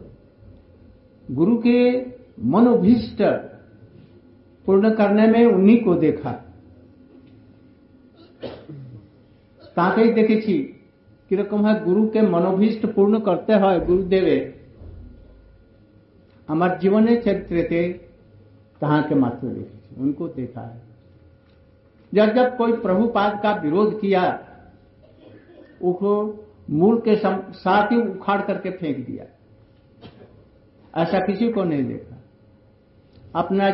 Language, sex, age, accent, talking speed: Hindi, male, 60-79, native, 105 wpm